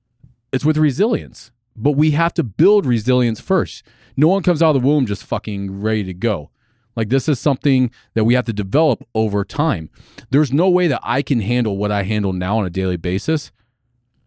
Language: English